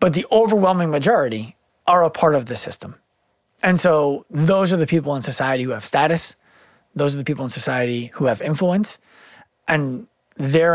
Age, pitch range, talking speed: 30-49, 130-170 Hz, 180 wpm